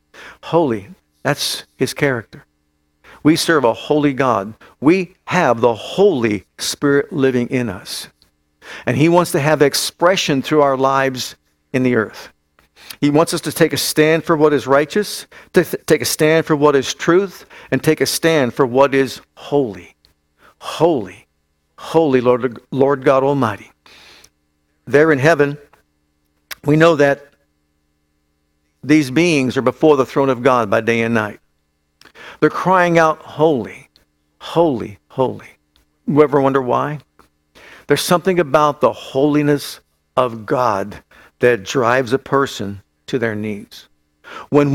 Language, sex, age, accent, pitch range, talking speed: English, male, 50-69, American, 100-150 Hz, 140 wpm